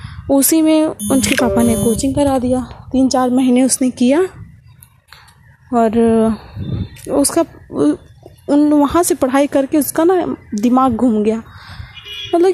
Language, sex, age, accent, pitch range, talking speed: Hindi, female, 20-39, native, 235-290 Hz, 125 wpm